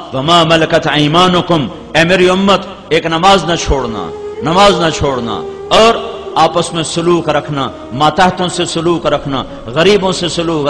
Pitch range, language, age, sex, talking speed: 165-205 Hz, Urdu, 50-69, male, 130 wpm